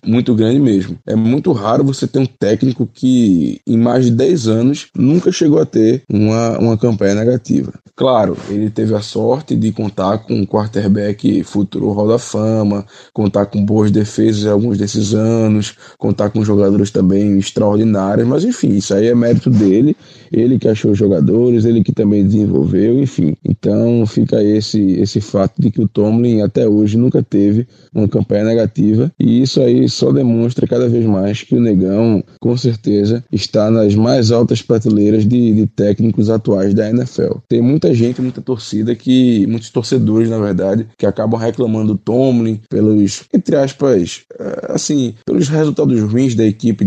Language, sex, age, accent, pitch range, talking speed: Portuguese, male, 20-39, Brazilian, 105-125 Hz, 165 wpm